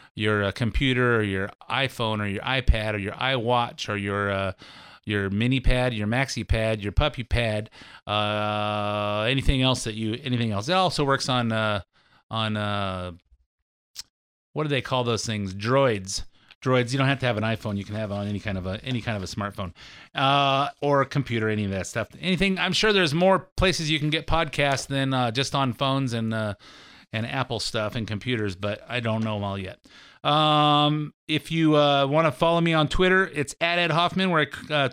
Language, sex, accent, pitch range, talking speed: English, male, American, 110-160 Hz, 205 wpm